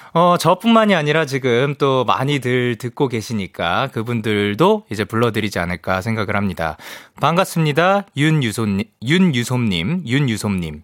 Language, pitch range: Korean, 130-215 Hz